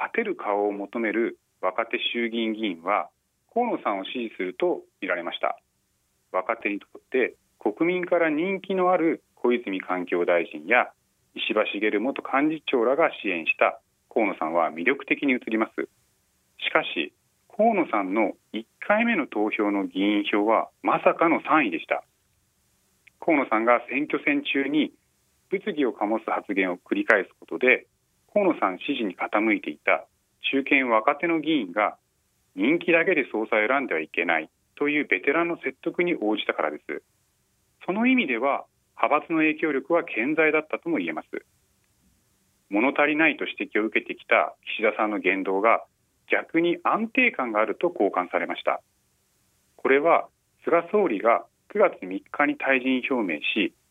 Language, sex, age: Japanese, male, 40-59